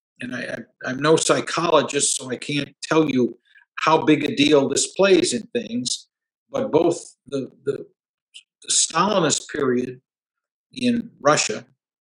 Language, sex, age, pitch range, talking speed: English, male, 50-69, 130-210 Hz, 125 wpm